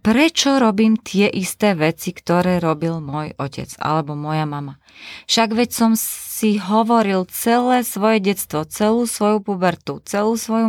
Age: 20-39